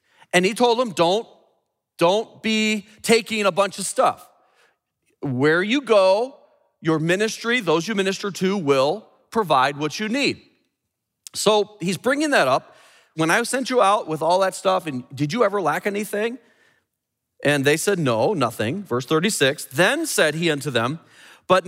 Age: 40-59